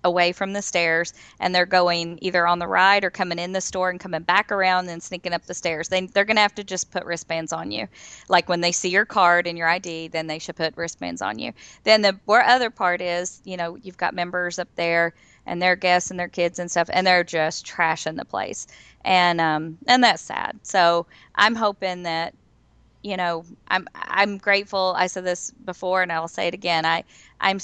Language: English